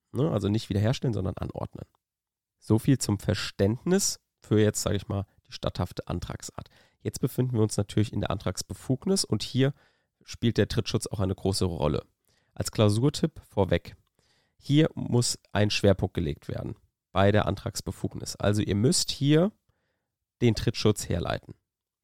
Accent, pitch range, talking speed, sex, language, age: German, 100-125 Hz, 145 wpm, male, German, 30-49